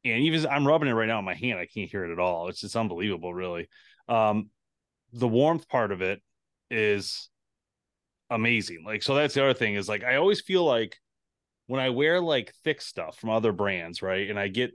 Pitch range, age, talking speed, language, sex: 100-125 Hz, 30-49, 215 wpm, English, male